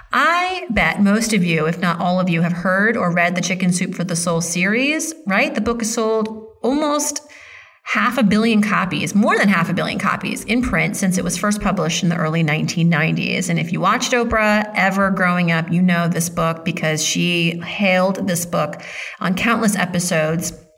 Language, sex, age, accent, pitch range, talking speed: English, female, 30-49, American, 170-210 Hz, 195 wpm